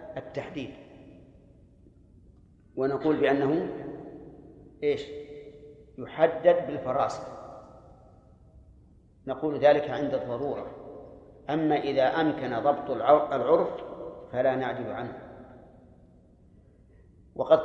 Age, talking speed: 50-69, 65 wpm